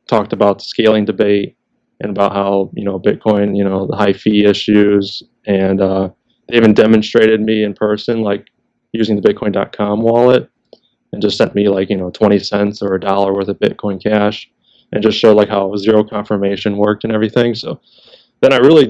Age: 20-39